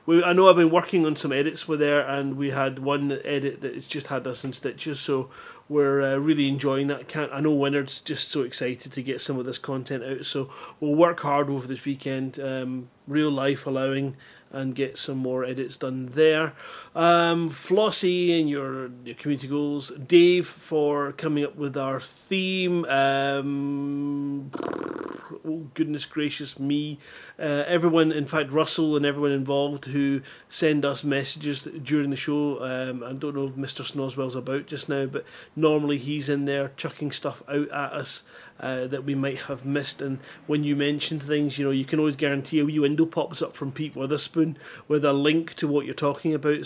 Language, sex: English, male